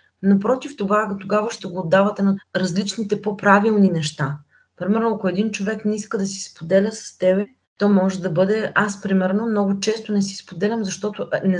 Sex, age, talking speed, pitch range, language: female, 20-39, 170 wpm, 195-255 Hz, Bulgarian